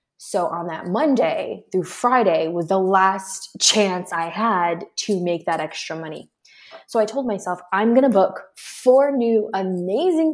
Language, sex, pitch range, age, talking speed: English, female, 180-250 Hz, 20-39, 165 wpm